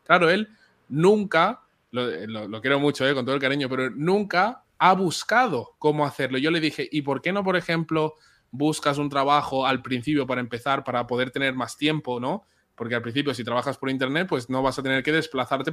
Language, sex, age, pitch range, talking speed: English, male, 20-39, 125-160 Hz, 200 wpm